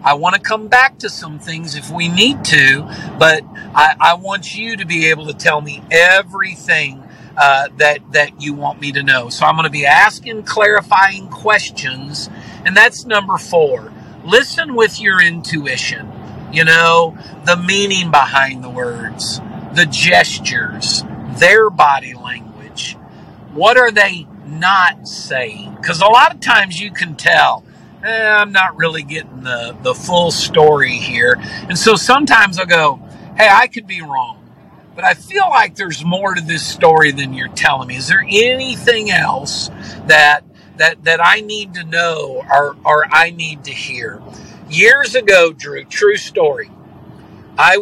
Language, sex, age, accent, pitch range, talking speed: English, male, 50-69, American, 150-220 Hz, 160 wpm